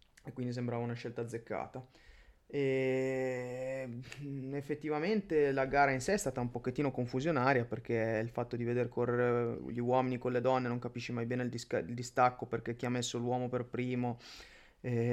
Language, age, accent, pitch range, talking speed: Italian, 20-39, native, 120-130 Hz, 175 wpm